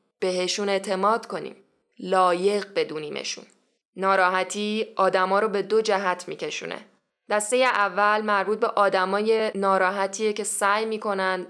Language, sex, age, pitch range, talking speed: Persian, female, 10-29, 185-220 Hz, 110 wpm